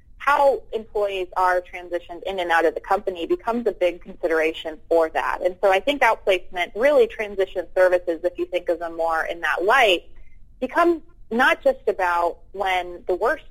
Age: 30-49